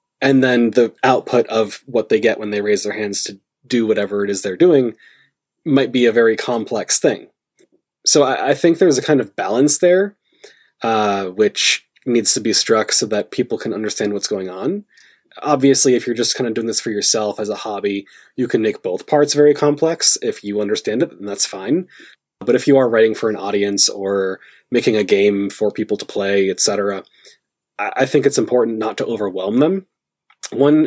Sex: male